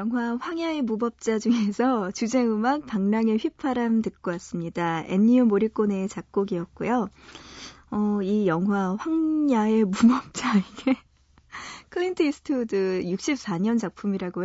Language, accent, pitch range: Korean, native, 190-255 Hz